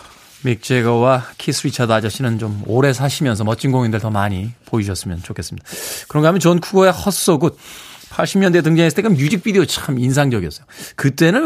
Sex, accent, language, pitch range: male, native, Korean, 125-165 Hz